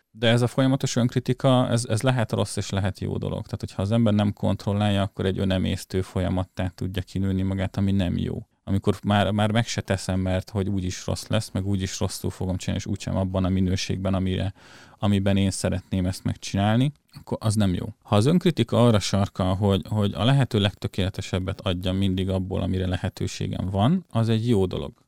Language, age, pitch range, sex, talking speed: Hungarian, 30-49, 95-110 Hz, male, 190 wpm